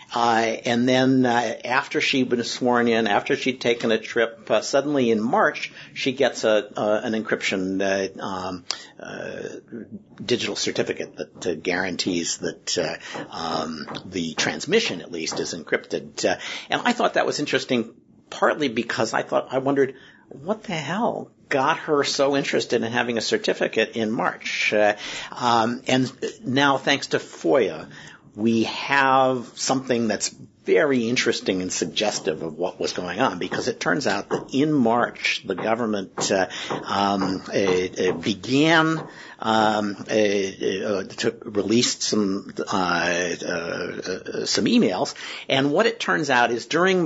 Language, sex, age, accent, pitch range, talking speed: English, male, 50-69, American, 100-135 Hz, 150 wpm